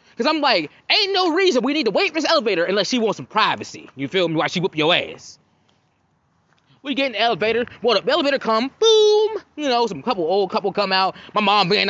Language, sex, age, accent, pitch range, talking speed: English, male, 20-39, American, 195-310 Hz, 235 wpm